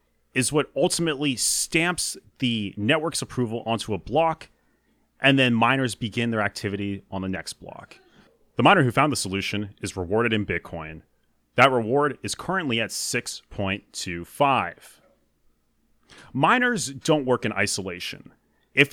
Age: 30-49